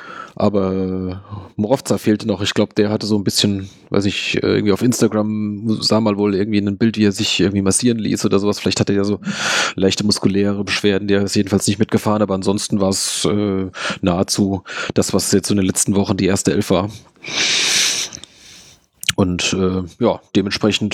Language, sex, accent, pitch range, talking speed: German, male, German, 100-125 Hz, 185 wpm